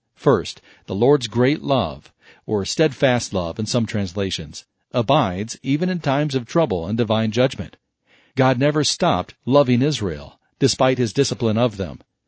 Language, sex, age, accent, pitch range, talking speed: English, male, 40-59, American, 115-135 Hz, 145 wpm